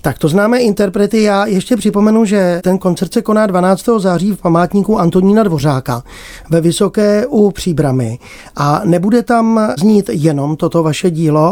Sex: male